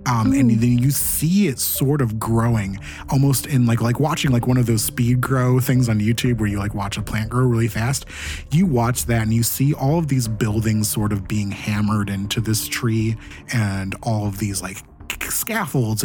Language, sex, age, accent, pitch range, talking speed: English, male, 20-39, American, 105-135 Hz, 205 wpm